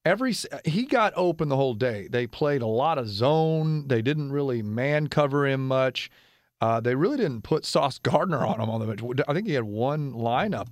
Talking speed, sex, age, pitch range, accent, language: 215 wpm, male, 40-59, 120-155 Hz, American, English